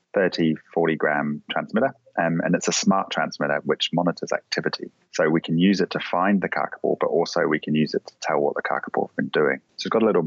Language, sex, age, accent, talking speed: English, male, 30-49, British, 230 wpm